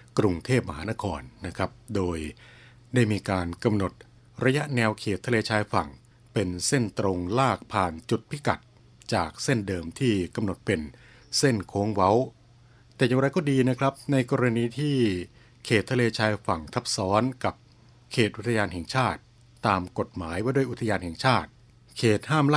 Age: 60-79